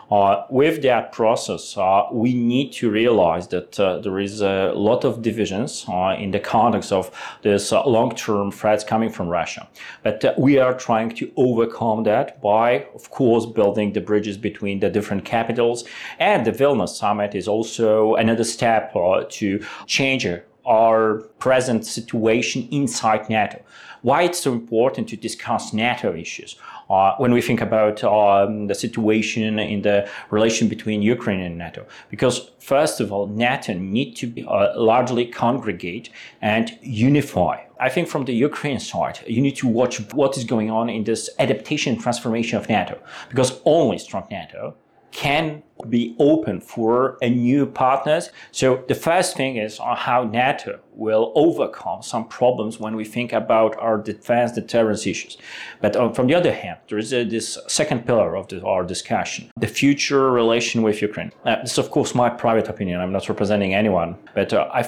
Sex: male